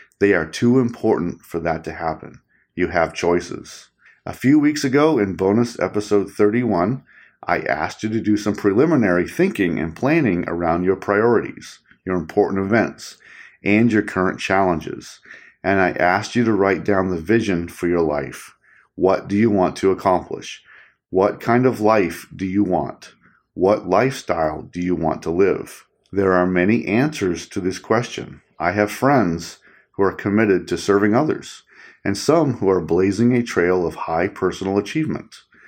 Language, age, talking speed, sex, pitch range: English, 40-59, 165 wpm, male, 90-110 Hz